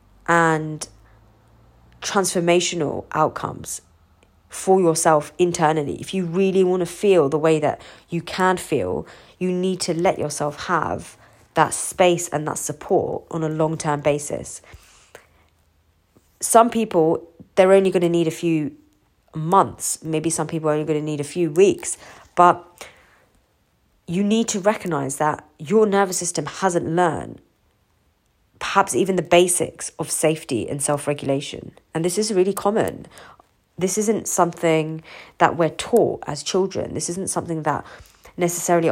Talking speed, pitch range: 140 wpm, 150-190 Hz